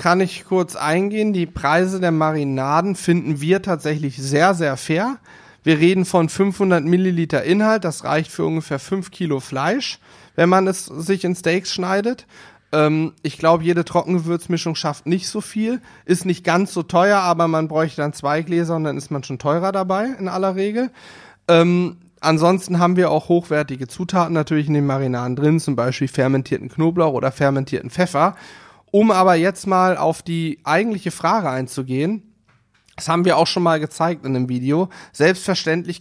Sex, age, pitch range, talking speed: male, 40-59, 145-175 Hz, 170 wpm